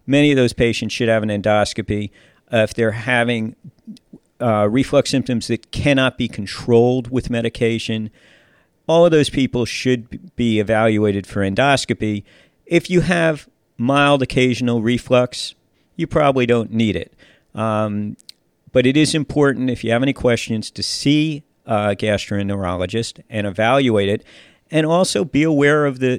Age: 50-69